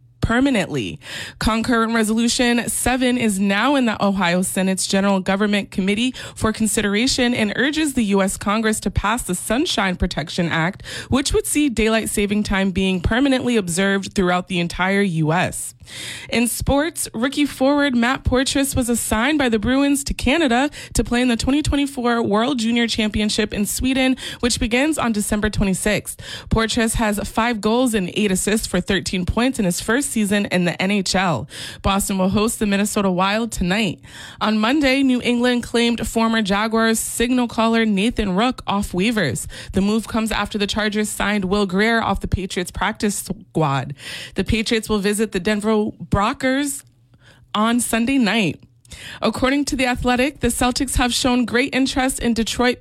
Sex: female